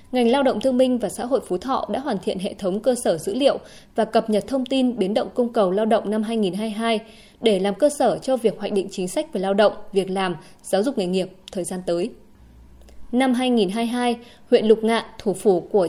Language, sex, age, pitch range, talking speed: Vietnamese, female, 20-39, 195-250 Hz, 235 wpm